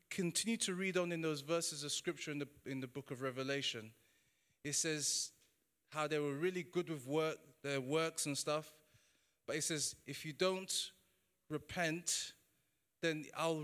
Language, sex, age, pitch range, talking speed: English, male, 30-49, 140-170 Hz, 165 wpm